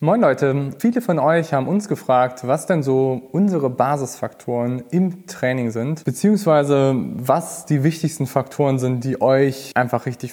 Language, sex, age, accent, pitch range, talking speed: German, male, 20-39, German, 130-165 Hz, 150 wpm